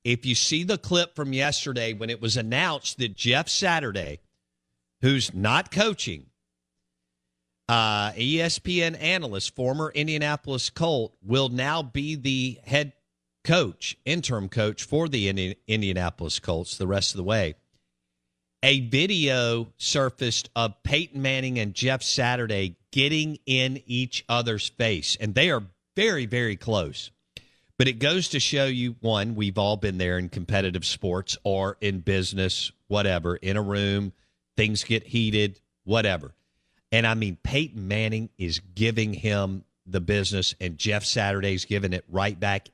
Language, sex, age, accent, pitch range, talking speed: English, male, 50-69, American, 95-135 Hz, 145 wpm